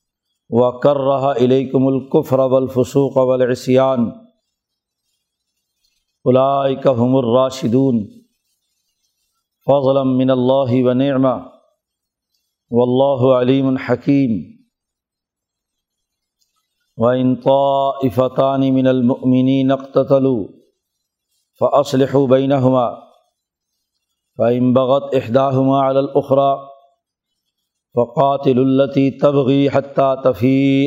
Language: Urdu